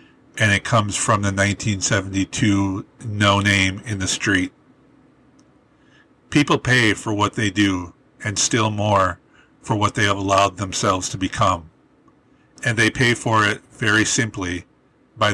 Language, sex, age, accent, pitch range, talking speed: English, male, 50-69, American, 100-115 Hz, 135 wpm